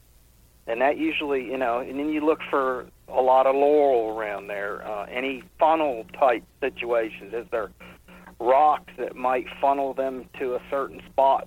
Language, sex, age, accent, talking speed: English, male, 50-69, American, 160 wpm